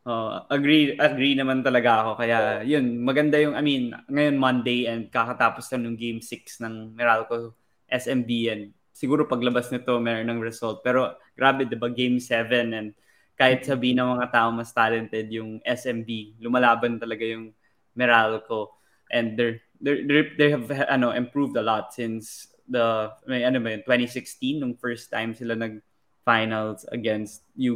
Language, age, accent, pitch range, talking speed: Filipino, 20-39, native, 115-130 Hz, 155 wpm